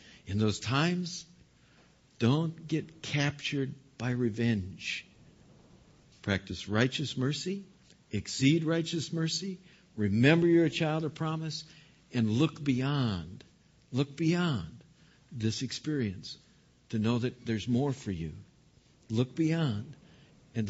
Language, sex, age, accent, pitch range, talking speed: English, male, 60-79, American, 110-150 Hz, 105 wpm